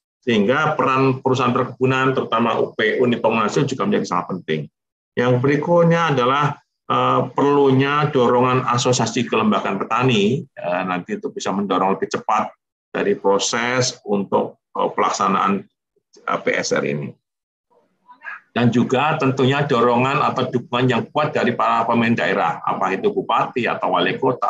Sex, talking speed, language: male, 120 wpm, Indonesian